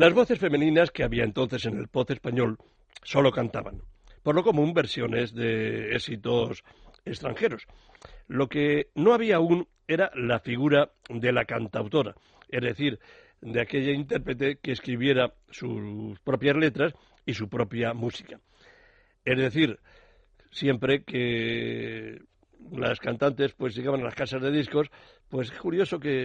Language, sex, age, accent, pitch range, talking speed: Spanish, male, 60-79, Spanish, 120-145 Hz, 140 wpm